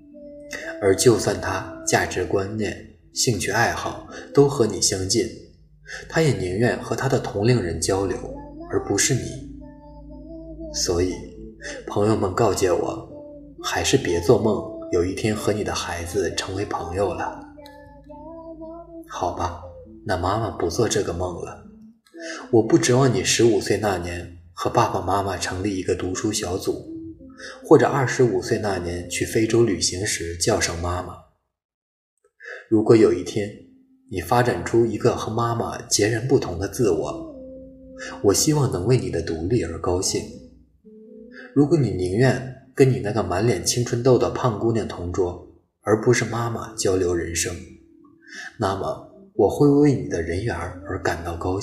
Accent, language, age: native, Chinese, 20-39